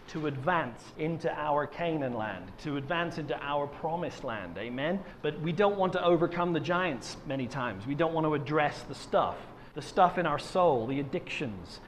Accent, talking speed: British, 185 wpm